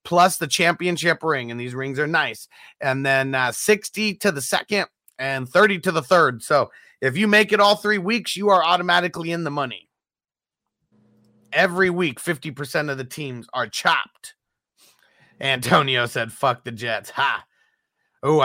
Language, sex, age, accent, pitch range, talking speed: English, male, 30-49, American, 135-180 Hz, 165 wpm